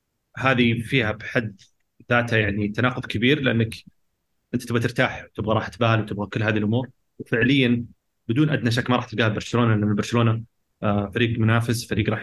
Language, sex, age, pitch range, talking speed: Arabic, male, 30-49, 105-120 Hz, 155 wpm